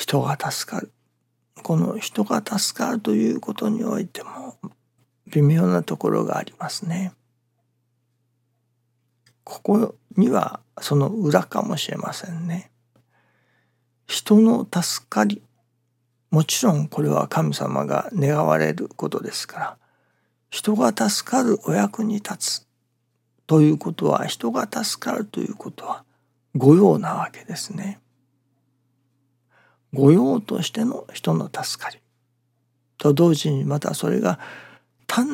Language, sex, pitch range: Japanese, male, 120-195 Hz